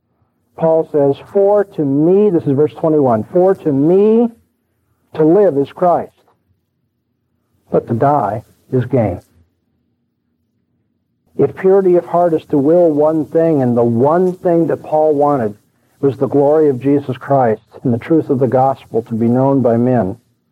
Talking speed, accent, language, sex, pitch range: 160 wpm, American, English, male, 110-145 Hz